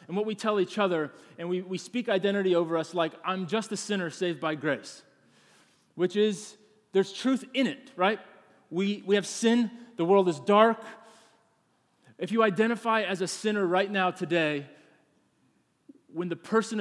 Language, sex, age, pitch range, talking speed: English, male, 30-49, 175-215 Hz, 170 wpm